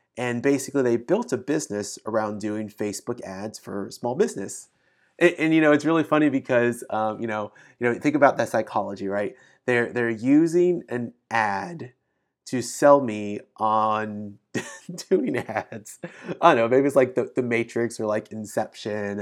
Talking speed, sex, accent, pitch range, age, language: 170 wpm, male, American, 105-150 Hz, 30-49, English